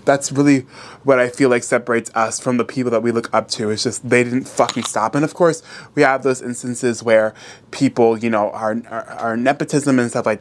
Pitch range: 125-155 Hz